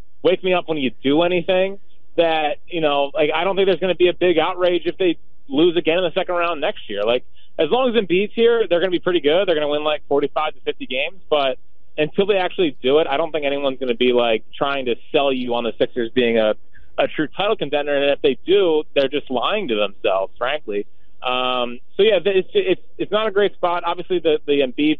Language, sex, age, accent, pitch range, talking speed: English, male, 20-39, American, 135-190 Hz, 245 wpm